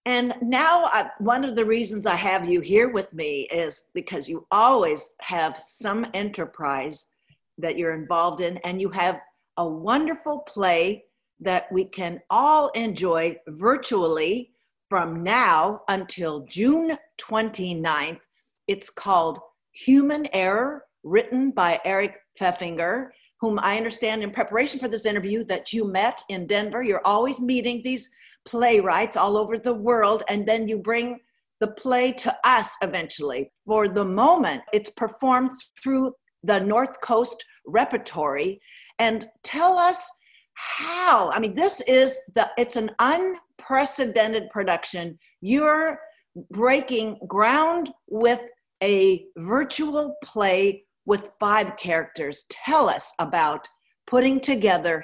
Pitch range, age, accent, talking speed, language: 190-265 Hz, 50-69, American, 130 wpm, English